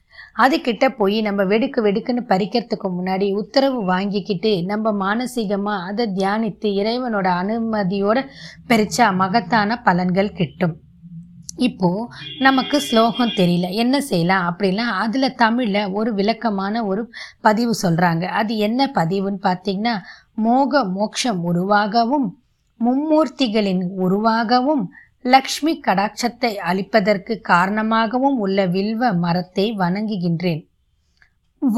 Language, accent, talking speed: Tamil, native, 85 wpm